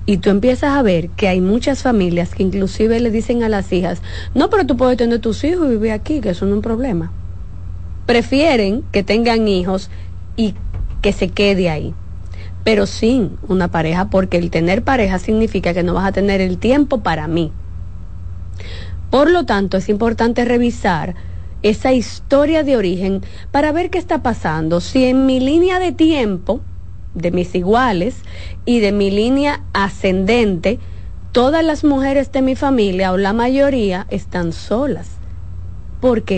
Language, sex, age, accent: Spanish, female, 20-39, American